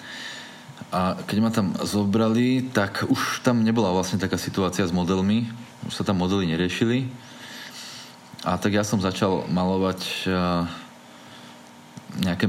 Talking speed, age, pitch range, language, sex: 125 wpm, 20-39, 90-110 Hz, Slovak, male